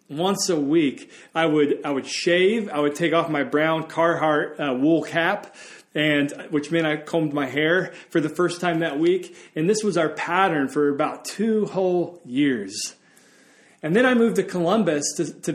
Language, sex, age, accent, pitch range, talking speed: English, male, 30-49, American, 150-200 Hz, 190 wpm